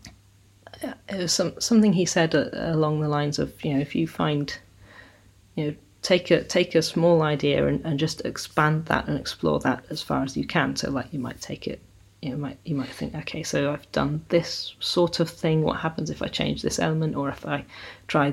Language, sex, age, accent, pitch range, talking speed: English, female, 30-49, British, 135-165 Hz, 225 wpm